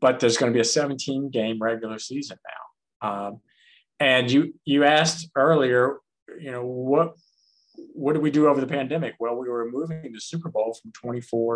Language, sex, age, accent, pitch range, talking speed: English, male, 50-69, American, 115-135 Hz, 180 wpm